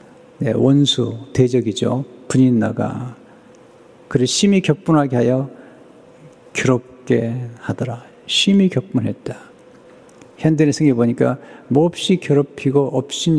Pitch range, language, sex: 120-160 Hz, Korean, male